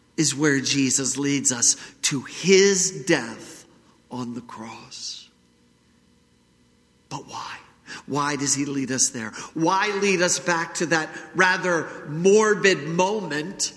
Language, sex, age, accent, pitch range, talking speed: English, male, 50-69, American, 130-215 Hz, 120 wpm